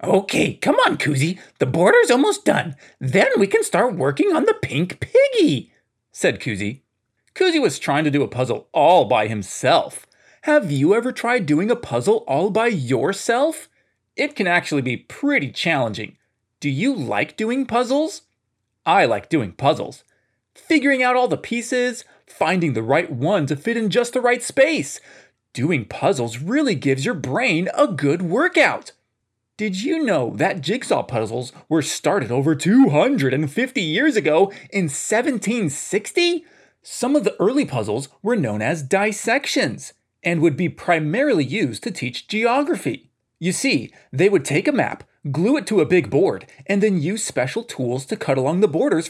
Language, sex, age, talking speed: English, male, 30-49, 165 wpm